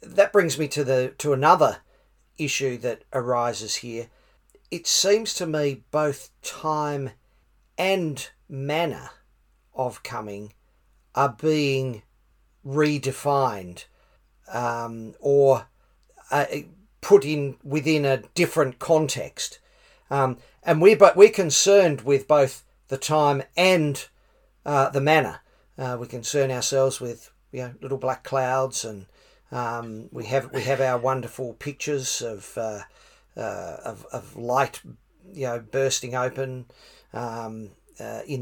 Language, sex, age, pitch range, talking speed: English, male, 40-59, 125-150 Hz, 125 wpm